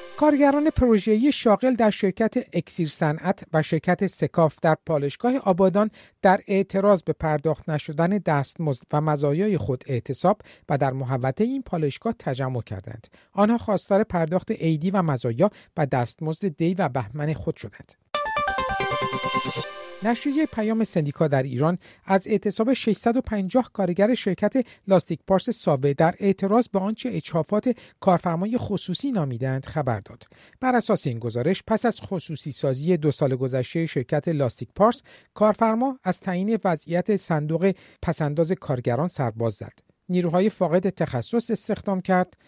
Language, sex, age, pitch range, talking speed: Persian, male, 50-69, 145-205 Hz, 135 wpm